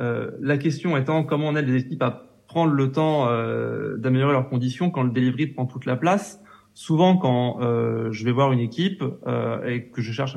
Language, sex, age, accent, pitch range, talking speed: French, male, 20-39, French, 120-155 Hz, 215 wpm